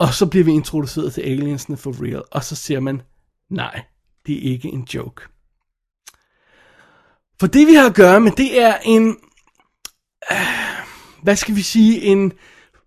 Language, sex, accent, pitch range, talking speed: Danish, male, native, 165-200 Hz, 165 wpm